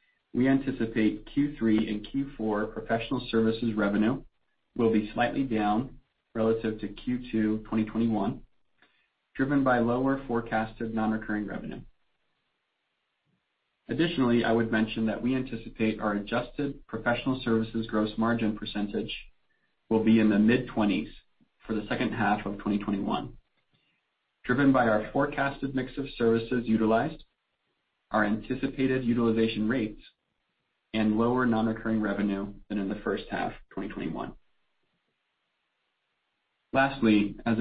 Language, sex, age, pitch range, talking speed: English, male, 40-59, 105-120 Hz, 115 wpm